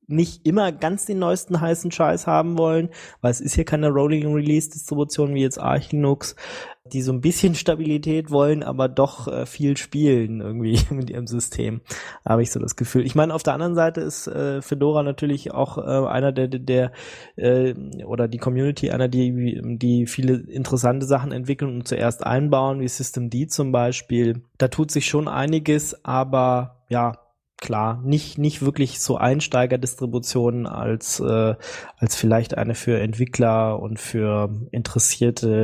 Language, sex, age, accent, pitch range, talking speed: German, male, 20-39, German, 115-140 Hz, 165 wpm